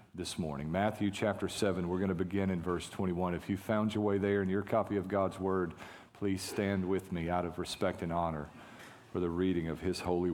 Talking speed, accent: 225 wpm, American